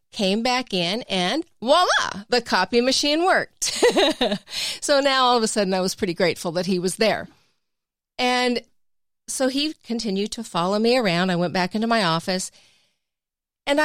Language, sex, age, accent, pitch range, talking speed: English, female, 40-59, American, 175-240 Hz, 165 wpm